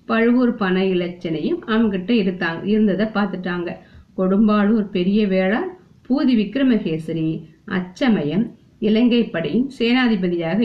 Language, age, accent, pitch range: Tamil, 50-69, native, 180-225 Hz